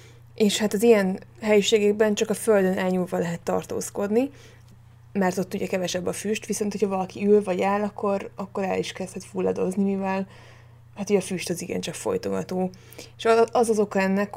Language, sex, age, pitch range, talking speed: Hungarian, female, 20-39, 170-205 Hz, 170 wpm